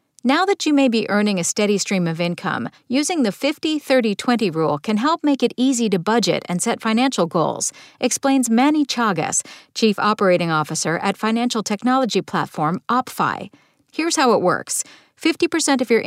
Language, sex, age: English, female, 40-59